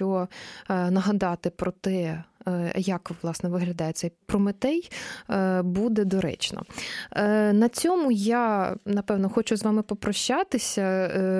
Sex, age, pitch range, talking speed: female, 20-39, 185-225 Hz, 100 wpm